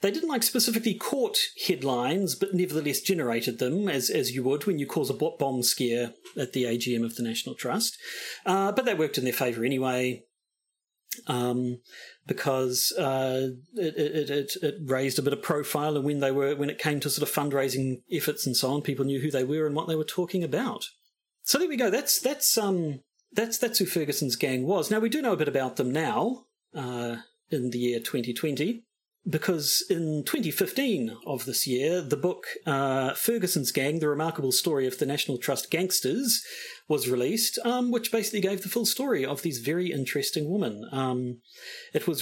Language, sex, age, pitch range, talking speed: English, male, 40-59, 130-185 Hz, 195 wpm